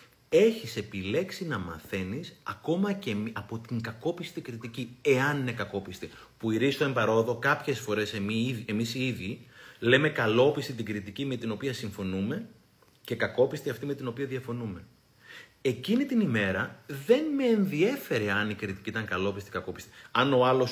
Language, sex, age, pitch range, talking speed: Greek, male, 30-49, 115-185 Hz, 155 wpm